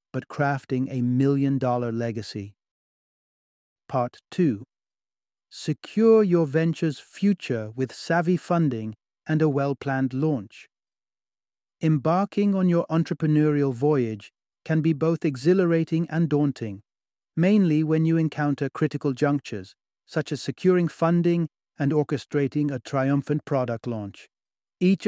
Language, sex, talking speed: English, male, 110 wpm